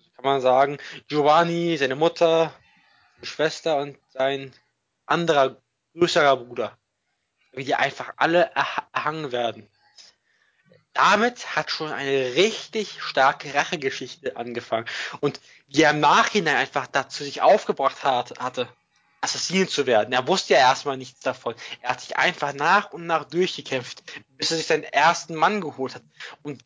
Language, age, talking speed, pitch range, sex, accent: German, 20-39, 140 wpm, 135-170 Hz, male, German